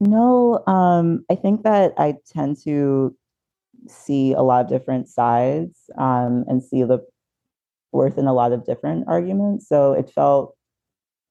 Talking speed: 150 wpm